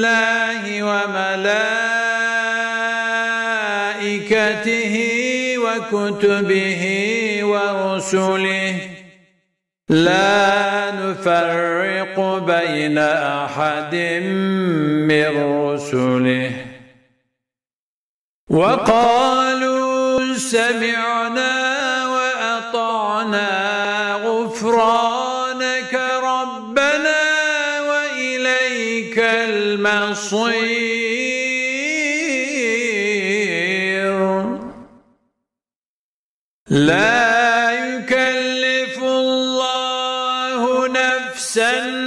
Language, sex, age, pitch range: Turkish, male, 50-69, 200-255 Hz